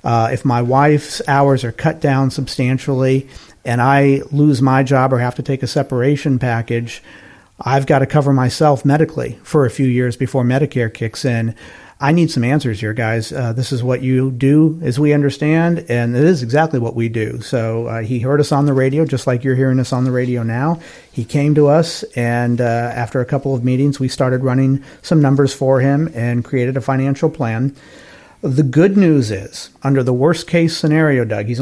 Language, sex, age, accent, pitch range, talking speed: English, male, 50-69, American, 120-145 Hz, 205 wpm